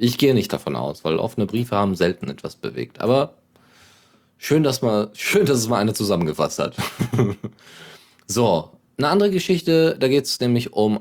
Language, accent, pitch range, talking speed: German, German, 100-145 Hz, 175 wpm